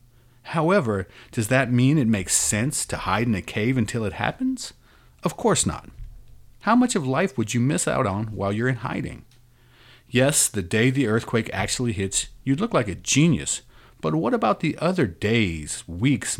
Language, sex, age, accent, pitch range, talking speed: English, male, 40-59, American, 95-130 Hz, 185 wpm